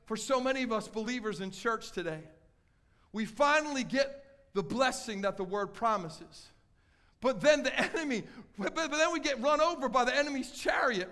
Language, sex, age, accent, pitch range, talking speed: English, male, 50-69, American, 180-260 Hz, 175 wpm